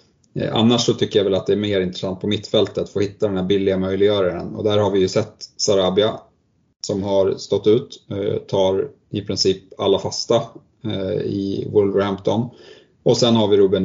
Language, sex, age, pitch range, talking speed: Swedish, male, 30-49, 95-110 Hz, 185 wpm